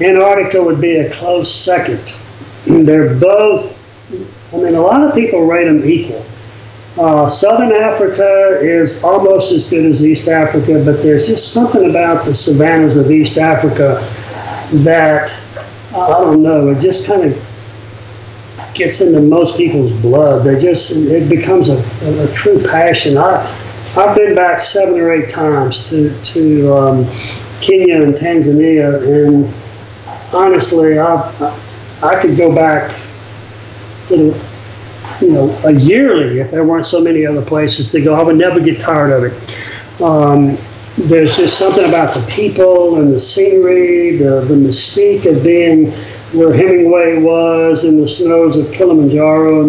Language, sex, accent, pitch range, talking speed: English, male, American, 120-170 Hz, 150 wpm